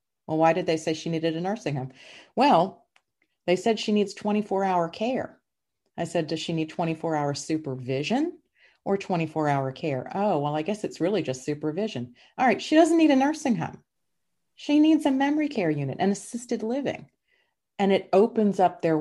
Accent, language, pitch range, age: American, English, 150-195 Hz, 40-59